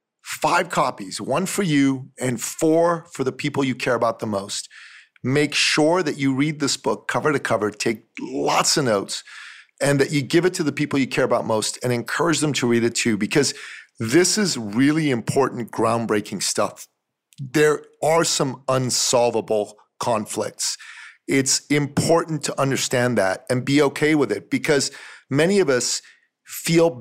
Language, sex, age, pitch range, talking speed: English, male, 40-59, 125-165 Hz, 165 wpm